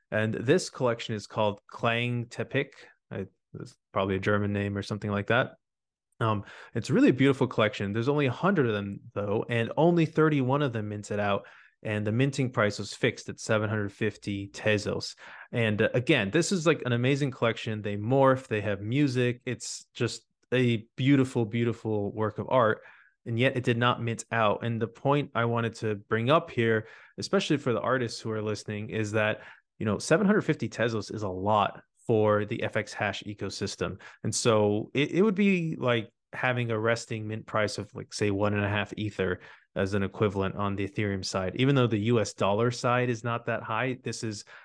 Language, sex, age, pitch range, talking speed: English, male, 20-39, 105-125 Hz, 190 wpm